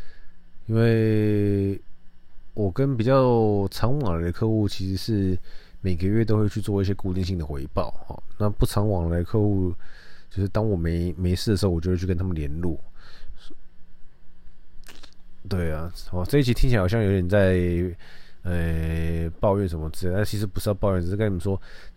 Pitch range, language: 90-110 Hz, Chinese